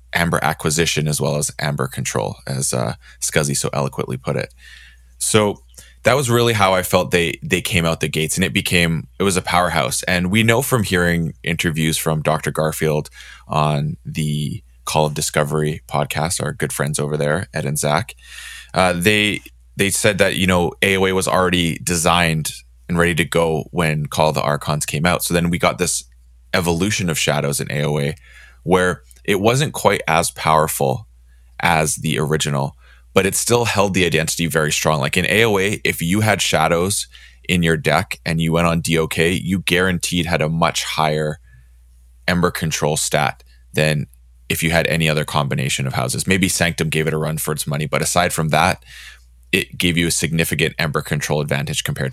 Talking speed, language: 185 wpm, English